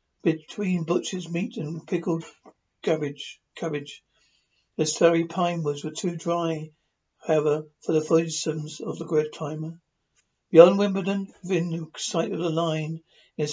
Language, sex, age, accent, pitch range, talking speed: English, male, 60-79, British, 155-175 Hz, 130 wpm